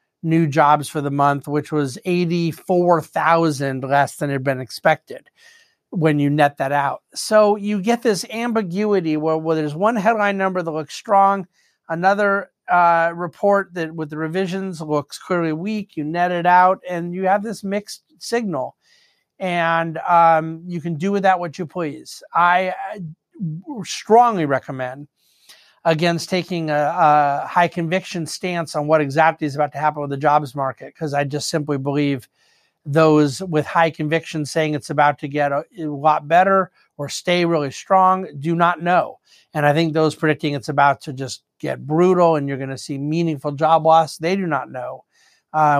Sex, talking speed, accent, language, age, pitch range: male, 175 wpm, American, English, 50-69, 145-180 Hz